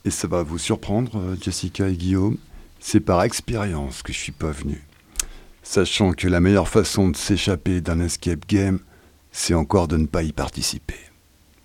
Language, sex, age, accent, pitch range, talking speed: French, male, 60-79, French, 85-110 Hz, 170 wpm